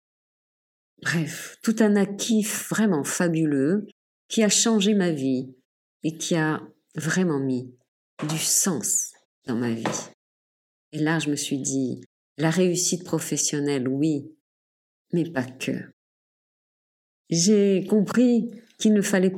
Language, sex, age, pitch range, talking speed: French, female, 50-69, 145-185 Hz, 120 wpm